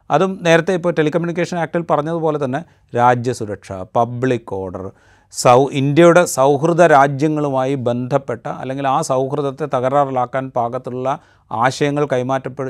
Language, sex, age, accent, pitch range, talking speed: Malayalam, male, 30-49, native, 110-145 Hz, 105 wpm